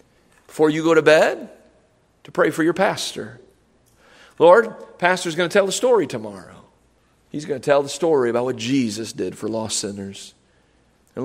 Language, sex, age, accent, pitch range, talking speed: English, male, 40-59, American, 125-160 Hz, 175 wpm